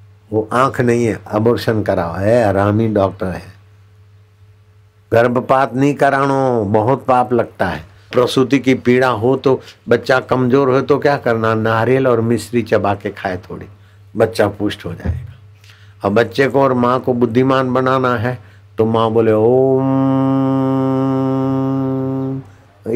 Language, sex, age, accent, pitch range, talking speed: Hindi, male, 60-79, native, 100-130 Hz, 135 wpm